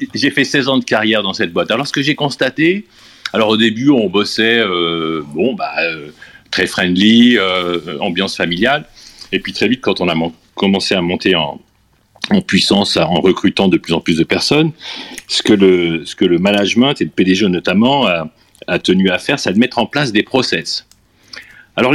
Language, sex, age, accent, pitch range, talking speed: French, male, 40-59, French, 100-145 Hz, 200 wpm